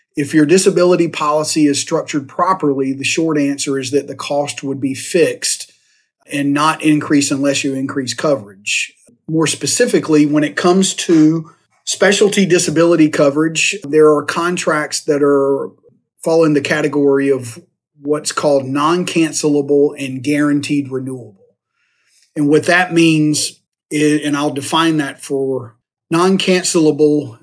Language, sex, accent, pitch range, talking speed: English, male, American, 140-160 Hz, 130 wpm